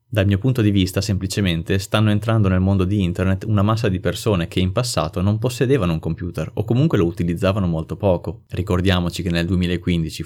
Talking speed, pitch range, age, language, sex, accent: 195 wpm, 90-105 Hz, 20-39, Italian, male, native